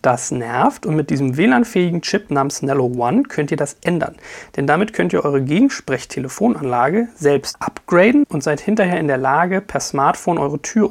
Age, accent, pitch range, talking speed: 40-59, German, 145-195 Hz, 175 wpm